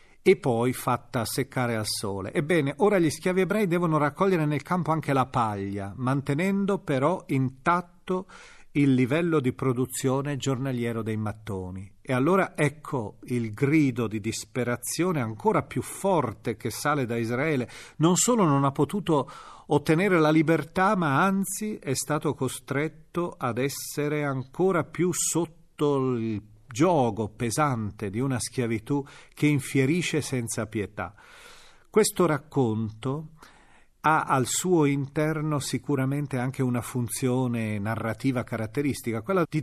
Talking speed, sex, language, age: 125 wpm, male, Italian, 40-59